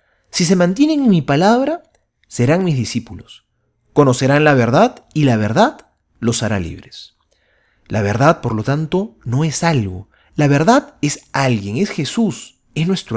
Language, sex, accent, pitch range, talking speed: Spanish, male, Argentinian, 110-175 Hz, 155 wpm